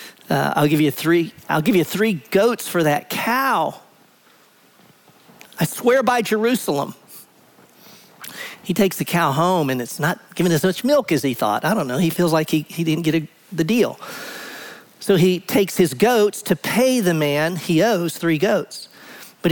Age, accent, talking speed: 50-69, American, 180 wpm